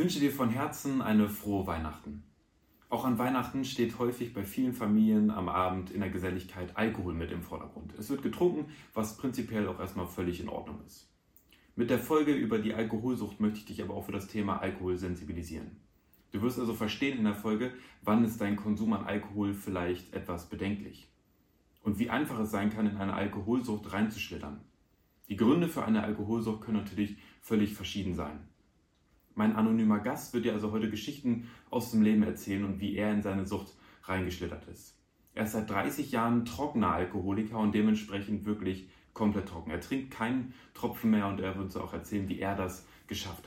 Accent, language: German, German